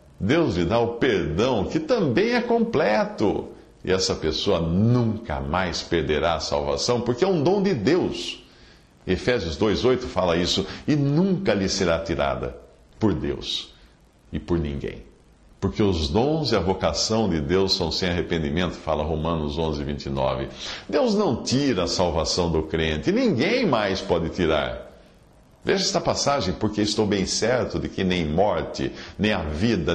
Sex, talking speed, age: male, 150 wpm, 60-79